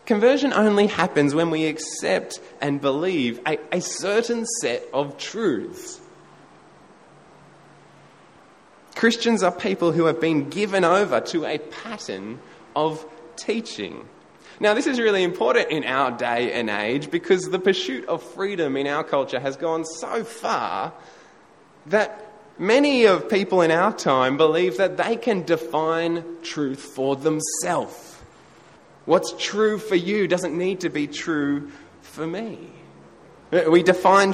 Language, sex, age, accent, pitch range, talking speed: English, male, 20-39, Australian, 155-215 Hz, 135 wpm